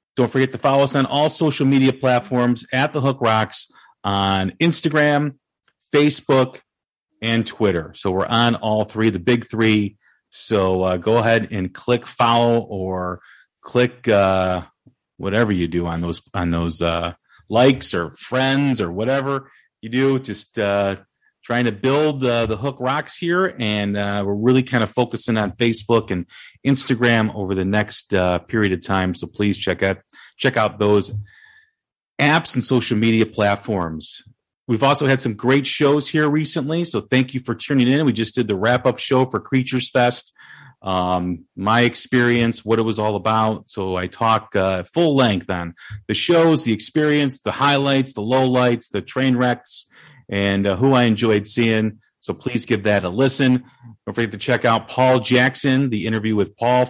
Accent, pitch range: American, 105-130 Hz